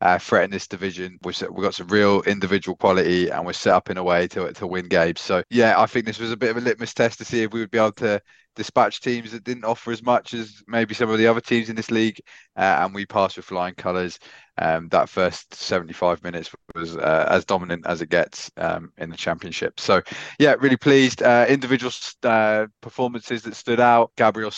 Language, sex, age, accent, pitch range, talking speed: English, male, 20-39, British, 90-115 Hz, 235 wpm